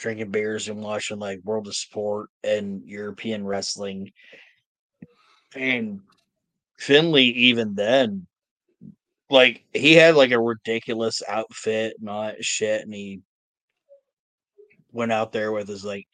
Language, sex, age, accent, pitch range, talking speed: English, male, 30-49, American, 105-175 Hz, 125 wpm